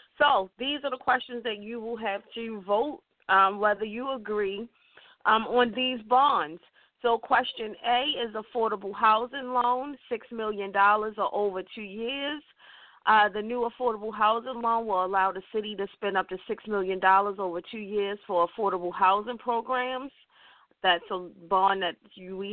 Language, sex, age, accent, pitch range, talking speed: English, female, 40-59, American, 195-235 Hz, 160 wpm